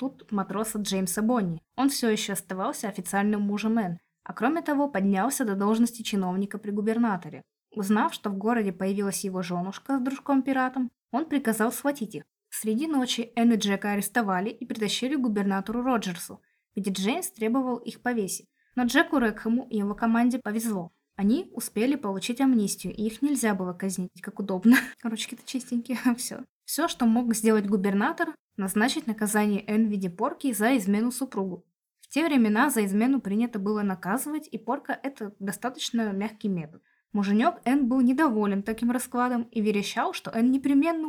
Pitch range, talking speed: 200-250 Hz, 155 wpm